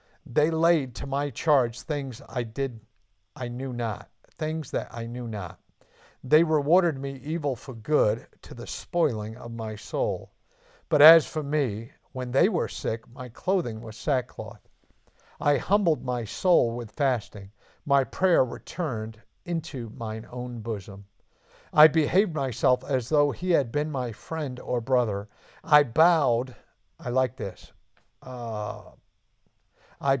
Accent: American